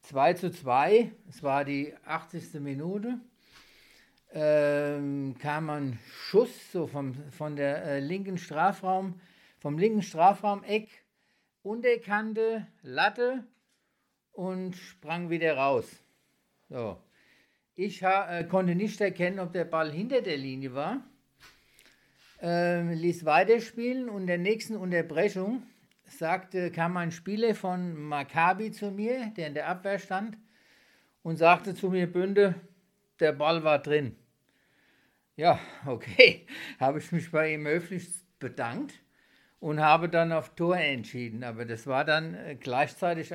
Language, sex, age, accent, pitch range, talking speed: German, male, 50-69, German, 145-195 Hz, 125 wpm